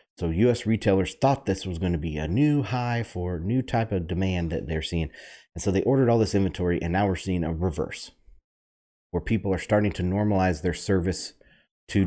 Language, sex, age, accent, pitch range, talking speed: English, male, 30-49, American, 80-100 Hz, 215 wpm